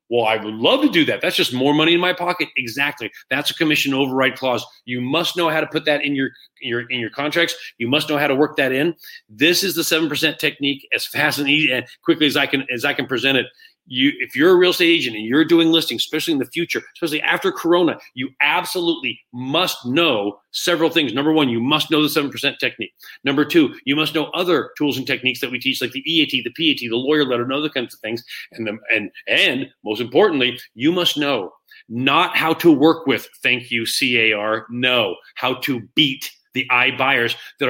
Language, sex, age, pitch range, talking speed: English, male, 40-59, 130-160 Hz, 220 wpm